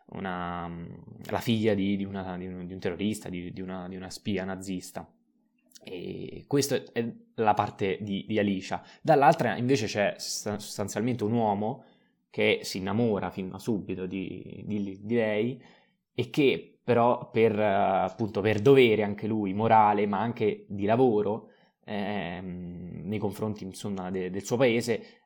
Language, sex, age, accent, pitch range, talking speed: Italian, male, 20-39, native, 95-110 Hz, 150 wpm